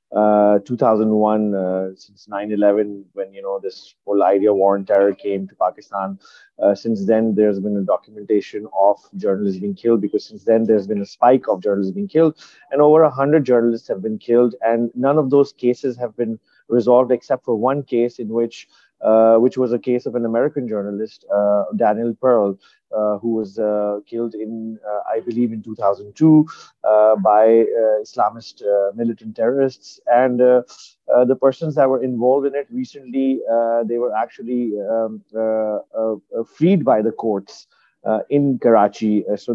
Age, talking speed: 30-49, 180 wpm